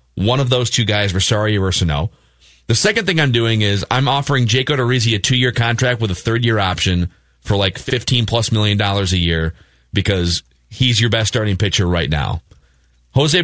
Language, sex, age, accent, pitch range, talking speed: English, male, 30-49, American, 95-130 Hz, 180 wpm